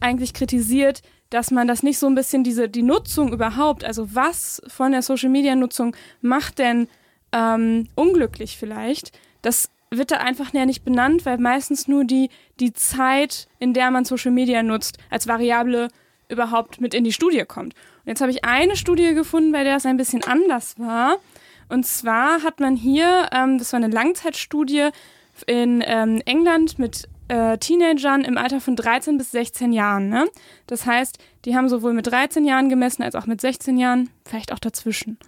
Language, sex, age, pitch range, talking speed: German, female, 20-39, 235-280 Hz, 175 wpm